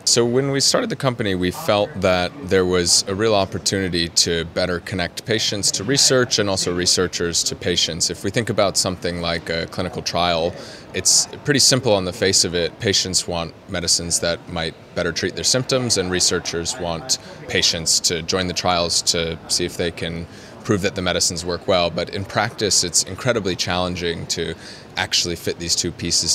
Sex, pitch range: male, 85-100 Hz